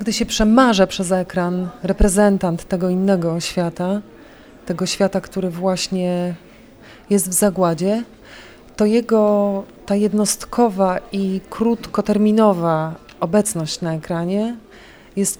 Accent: native